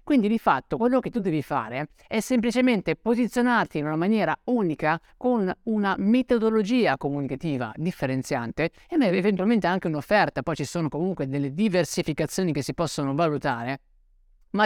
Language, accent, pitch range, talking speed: Italian, native, 150-225 Hz, 145 wpm